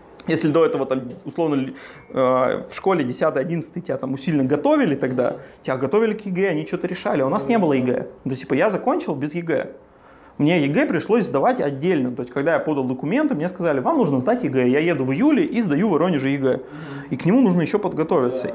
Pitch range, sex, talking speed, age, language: 145-230 Hz, male, 210 wpm, 20-39, Russian